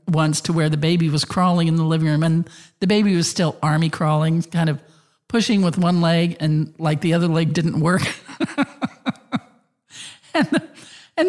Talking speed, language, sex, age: 170 wpm, English, male, 50-69